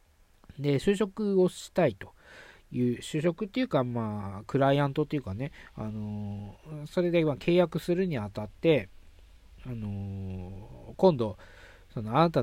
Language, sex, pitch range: Japanese, male, 100-165 Hz